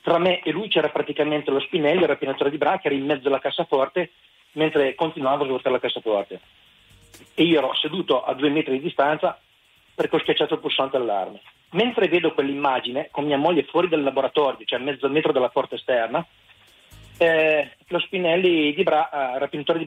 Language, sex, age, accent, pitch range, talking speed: Italian, male, 40-59, native, 140-170 Hz, 195 wpm